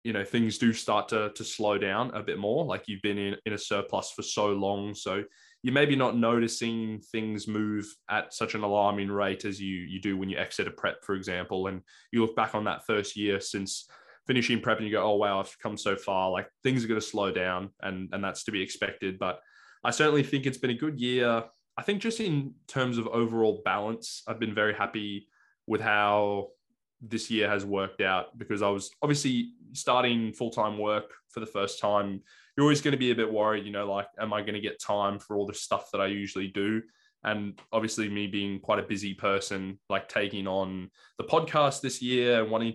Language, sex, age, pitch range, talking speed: English, male, 20-39, 100-115 Hz, 225 wpm